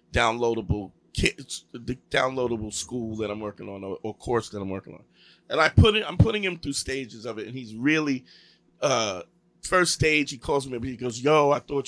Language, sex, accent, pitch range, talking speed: English, male, American, 120-150 Hz, 205 wpm